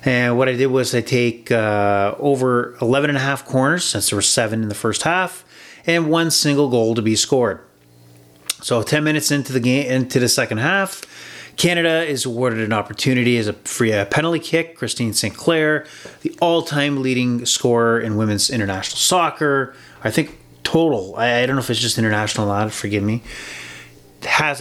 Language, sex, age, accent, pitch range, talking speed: English, male, 30-49, American, 110-135 Hz, 190 wpm